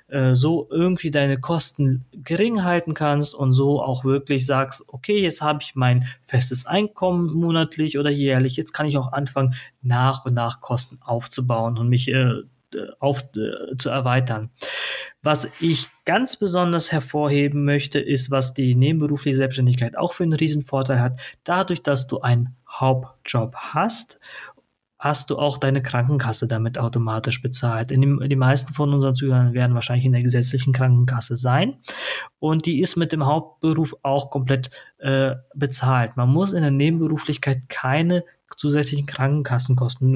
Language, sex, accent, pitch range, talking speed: German, male, German, 130-150 Hz, 150 wpm